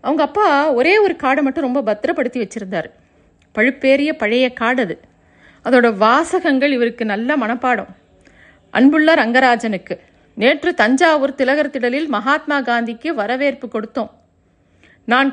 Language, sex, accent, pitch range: Tamil, female, native, 225-295 Hz